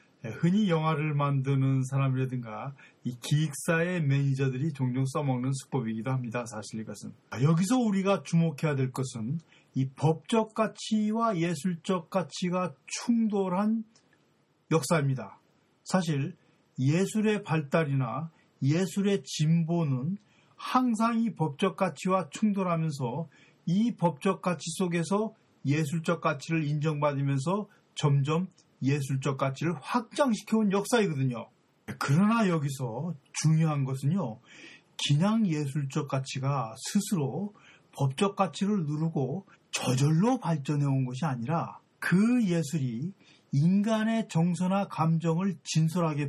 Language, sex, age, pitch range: Korean, male, 40-59, 140-195 Hz